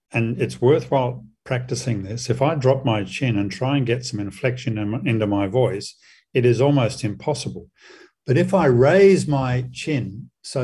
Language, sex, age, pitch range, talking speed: English, male, 50-69, 110-140 Hz, 170 wpm